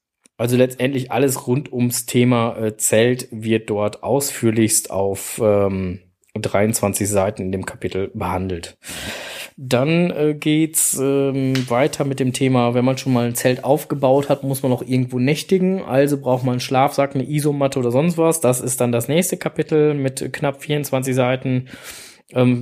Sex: male